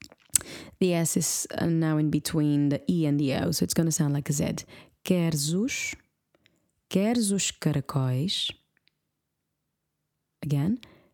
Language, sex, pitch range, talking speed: English, female, 150-205 Hz, 125 wpm